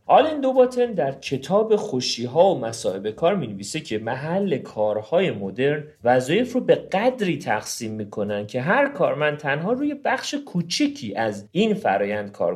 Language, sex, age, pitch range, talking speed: Persian, male, 40-59, 110-185 Hz, 150 wpm